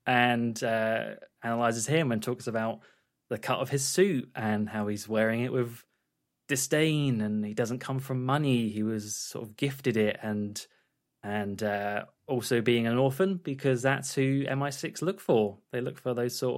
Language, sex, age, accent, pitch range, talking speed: English, male, 20-39, British, 105-130 Hz, 175 wpm